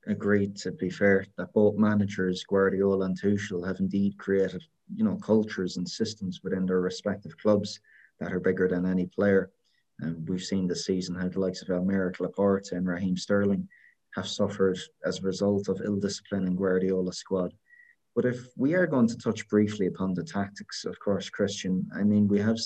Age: 20-39